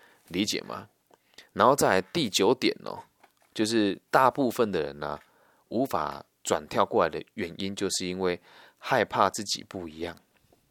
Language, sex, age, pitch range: Chinese, male, 20-39, 90-120 Hz